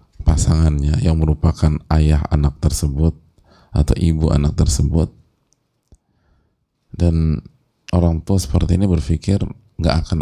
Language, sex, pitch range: English, male, 80-95 Hz